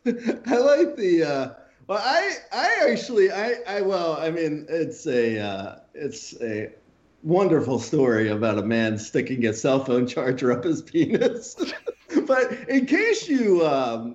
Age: 30-49